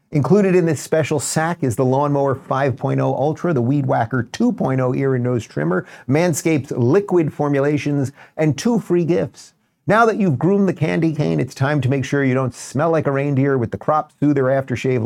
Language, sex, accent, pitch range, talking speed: English, male, American, 125-160 Hz, 195 wpm